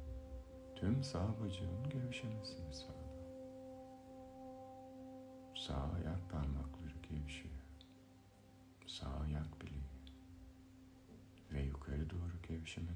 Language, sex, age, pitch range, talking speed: Turkish, male, 60-79, 85-135 Hz, 70 wpm